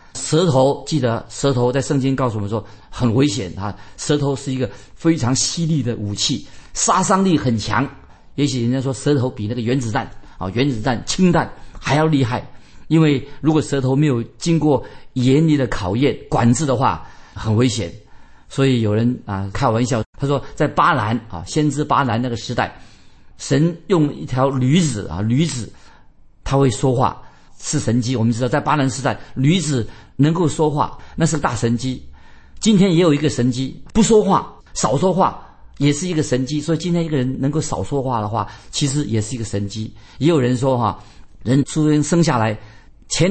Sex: male